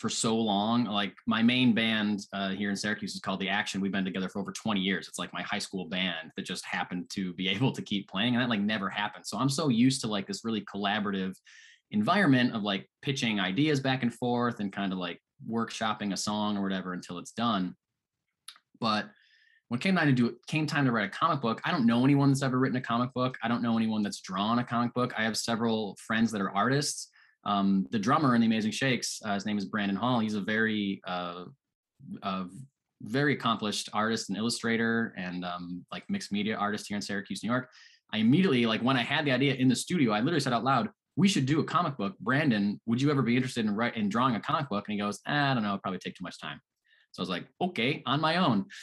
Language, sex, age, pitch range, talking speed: English, male, 20-39, 100-130 Hz, 245 wpm